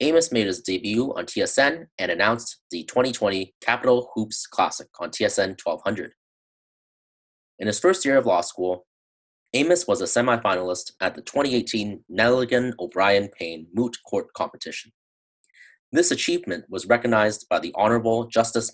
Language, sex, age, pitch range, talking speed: English, male, 30-49, 90-125 Hz, 140 wpm